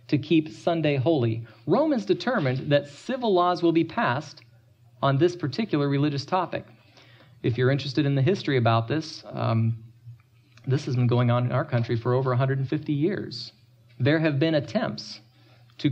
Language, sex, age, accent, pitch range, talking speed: English, male, 40-59, American, 120-150 Hz, 160 wpm